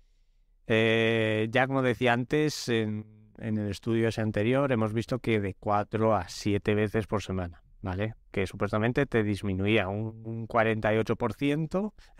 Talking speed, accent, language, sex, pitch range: 140 wpm, Spanish, Spanish, male, 100-120 Hz